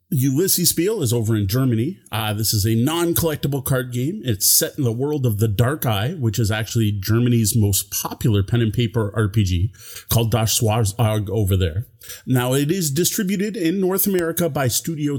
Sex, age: male, 30-49